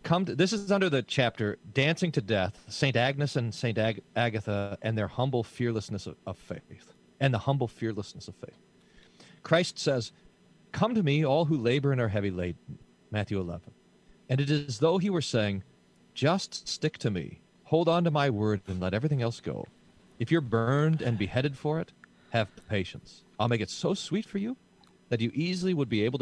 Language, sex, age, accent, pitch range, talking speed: English, male, 40-59, American, 105-150 Hz, 200 wpm